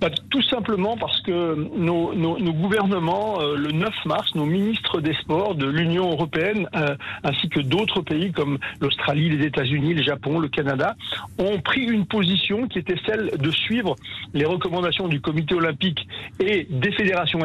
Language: French